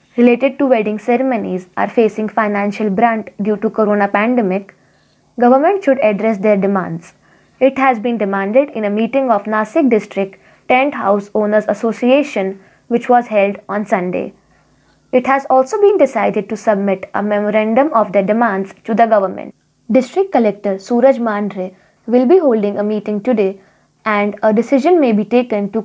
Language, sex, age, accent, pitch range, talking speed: Marathi, female, 20-39, native, 205-245 Hz, 160 wpm